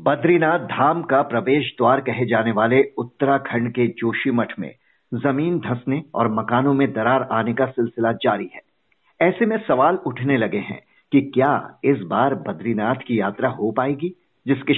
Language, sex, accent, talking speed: Hindi, male, native, 160 wpm